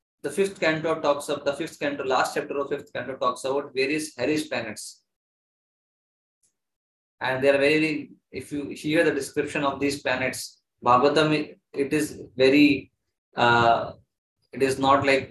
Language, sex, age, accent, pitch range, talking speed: English, male, 20-39, Indian, 125-145 Hz, 155 wpm